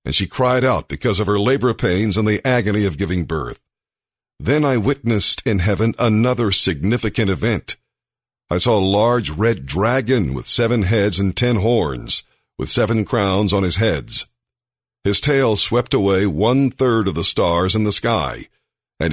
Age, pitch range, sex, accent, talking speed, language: 50-69, 95-120 Hz, male, American, 170 wpm, English